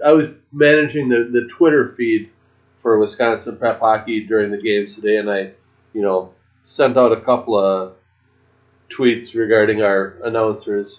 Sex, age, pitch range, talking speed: male, 30-49, 110-140 Hz, 155 wpm